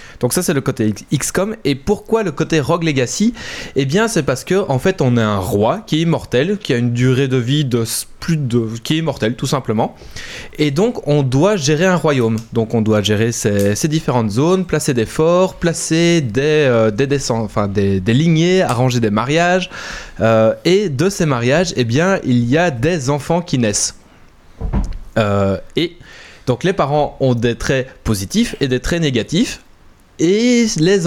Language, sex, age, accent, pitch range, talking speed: French, male, 20-39, French, 120-165 Hz, 190 wpm